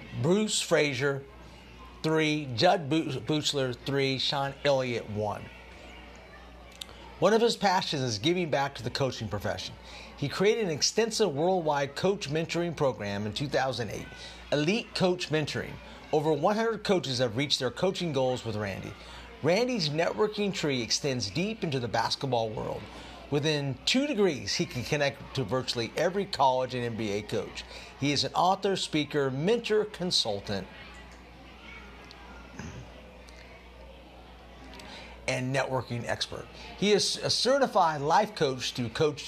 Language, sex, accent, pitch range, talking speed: English, male, American, 120-175 Hz, 125 wpm